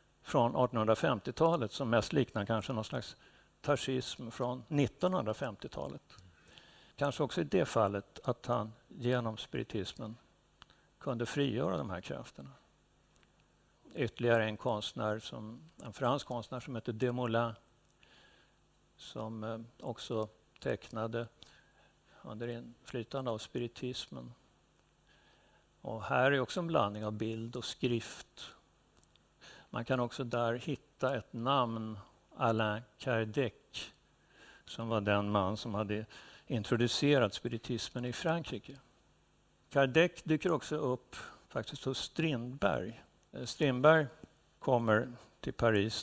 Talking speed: 110 wpm